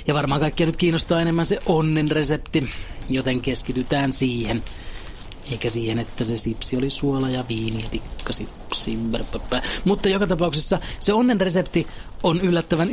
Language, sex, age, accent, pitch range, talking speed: Finnish, male, 30-49, native, 120-165 Hz, 150 wpm